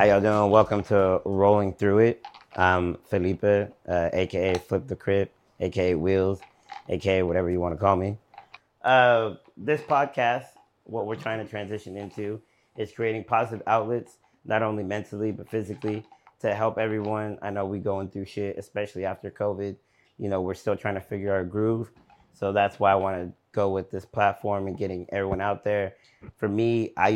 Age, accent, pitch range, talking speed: 30-49, American, 95-105 Hz, 180 wpm